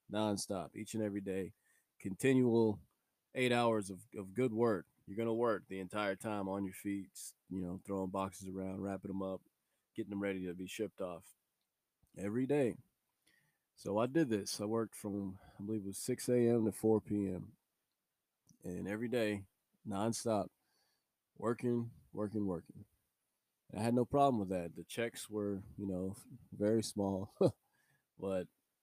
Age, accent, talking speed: 20-39, American, 160 wpm